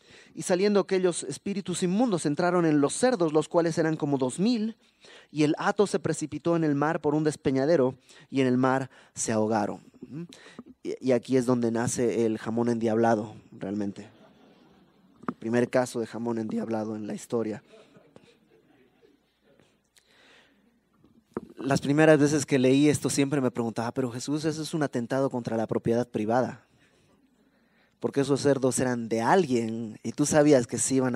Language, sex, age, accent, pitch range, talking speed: Spanish, male, 30-49, Mexican, 120-155 Hz, 155 wpm